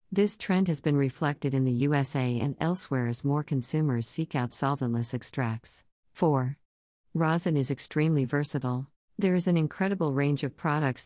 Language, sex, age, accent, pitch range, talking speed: English, female, 50-69, American, 130-160 Hz, 155 wpm